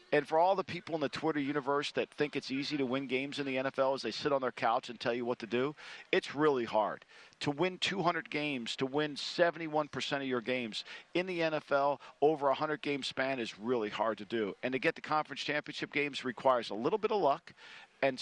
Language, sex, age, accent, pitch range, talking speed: English, male, 50-69, American, 130-155 Hz, 230 wpm